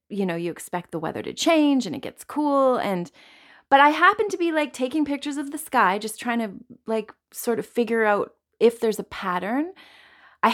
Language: English